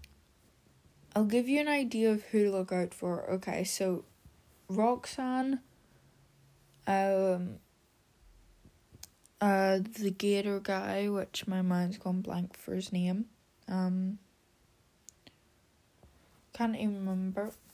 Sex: female